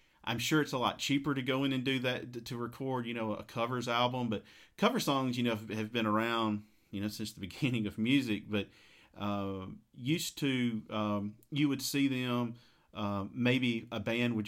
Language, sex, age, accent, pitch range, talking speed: English, male, 40-59, American, 105-125 Hz, 200 wpm